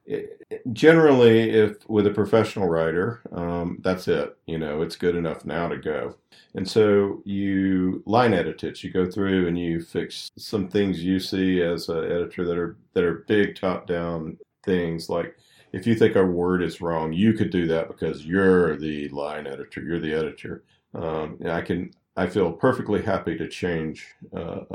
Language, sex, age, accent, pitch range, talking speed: English, male, 40-59, American, 80-100 Hz, 180 wpm